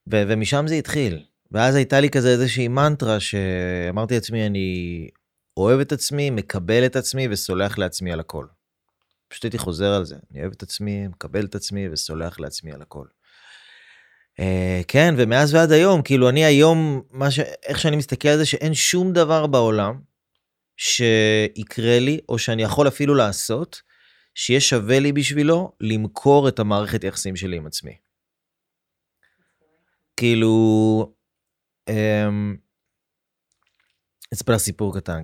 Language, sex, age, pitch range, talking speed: Hebrew, male, 30-49, 95-130 Hz, 135 wpm